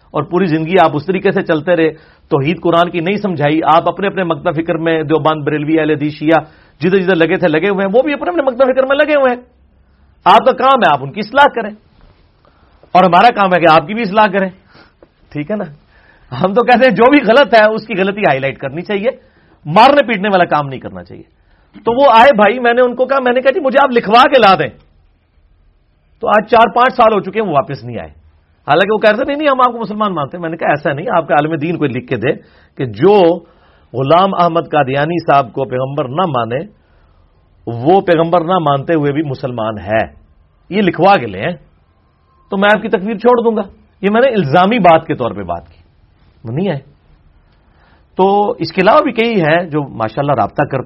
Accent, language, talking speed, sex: Indian, English, 150 wpm, male